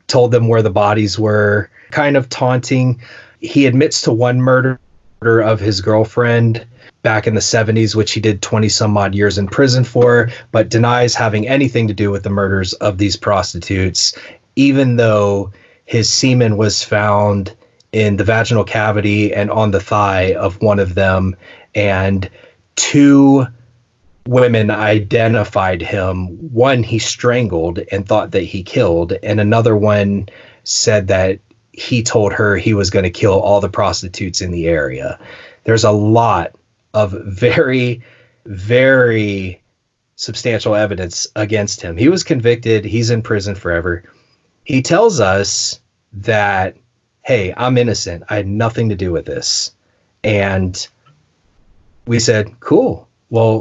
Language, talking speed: English, 145 wpm